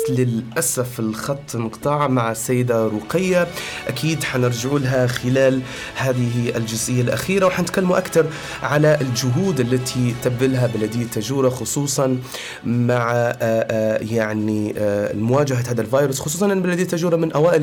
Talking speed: 110 wpm